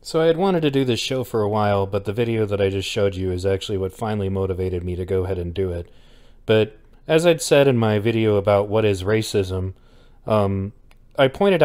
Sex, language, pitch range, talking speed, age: male, English, 95-125 Hz, 230 wpm, 30-49